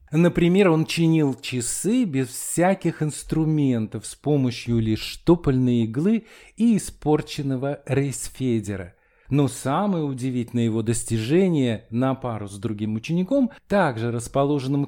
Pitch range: 120-175 Hz